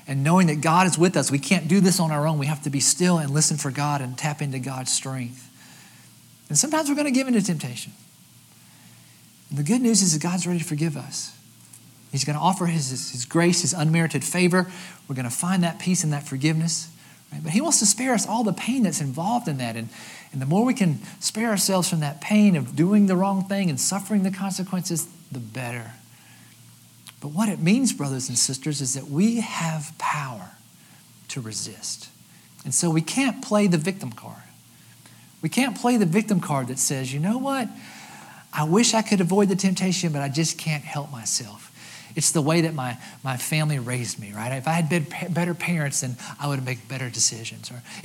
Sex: male